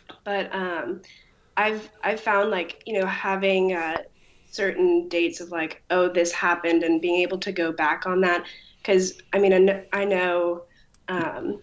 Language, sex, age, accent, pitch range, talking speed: English, female, 20-39, American, 175-205 Hz, 160 wpm